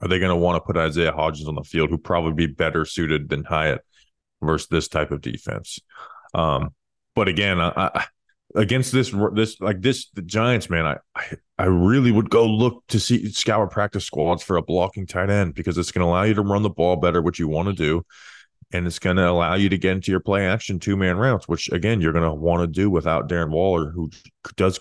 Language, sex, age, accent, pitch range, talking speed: English, male, 20-39, American, 85-105 Hz, 235 wpm